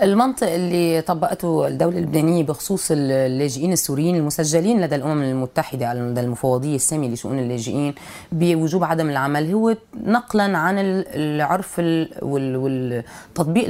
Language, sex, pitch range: Arabic, female, 135-175 Hz